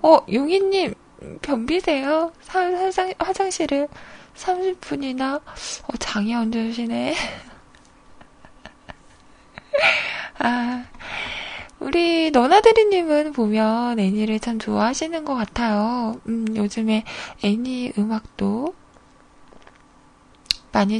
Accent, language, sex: native, Korean, female